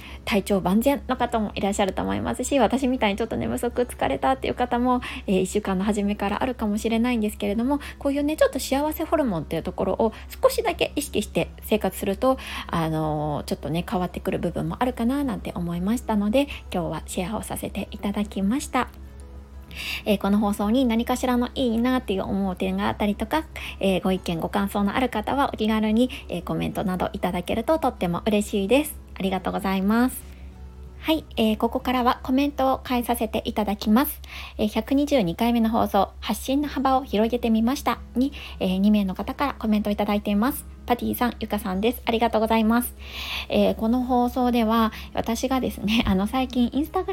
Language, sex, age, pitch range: Japanese, female, 20-39, 195-255 Hz